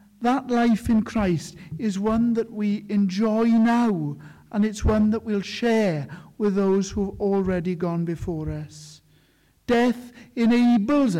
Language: English